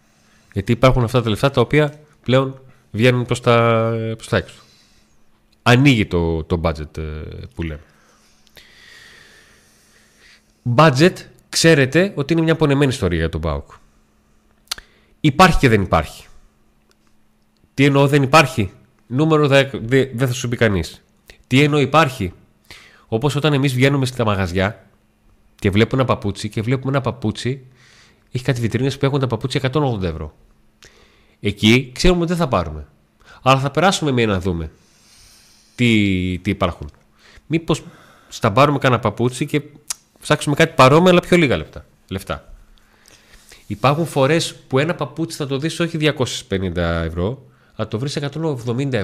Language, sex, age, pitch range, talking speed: Greek, male, 30-49, 105-145 Hz, 140 wpm